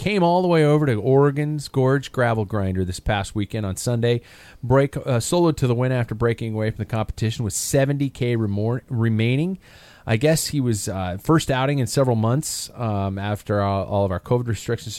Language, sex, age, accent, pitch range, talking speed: English, male, 40-59, American, 105-135 Hz, 195 wpm